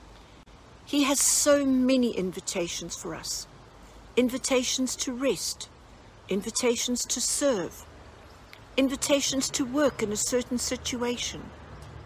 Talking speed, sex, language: 100 wpm, female, English